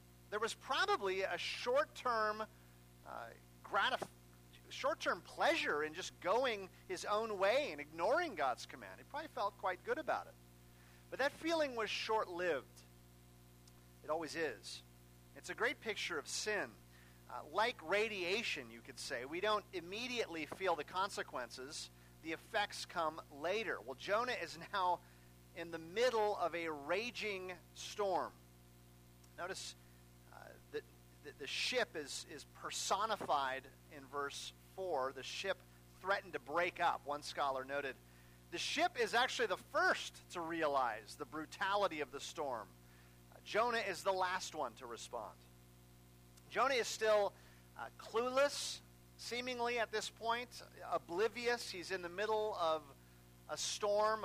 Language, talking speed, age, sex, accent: English, 135 wpm, 40-59, male, American